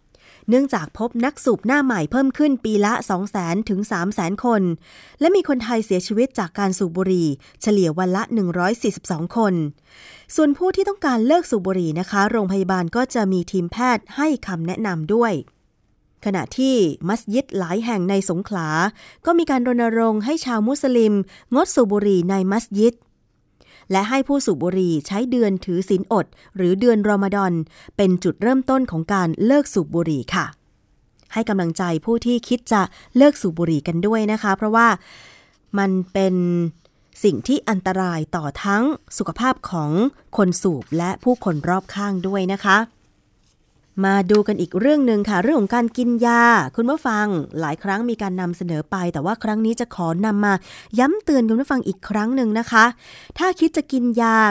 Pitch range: 185-240 Hz